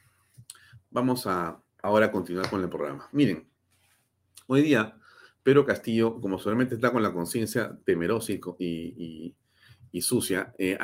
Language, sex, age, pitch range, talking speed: Spanish, male, 40-59, 105-140 Hz, 140 wpm